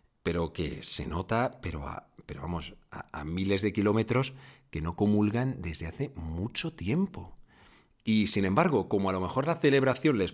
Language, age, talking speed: Spanish, 40-59, 175 wpm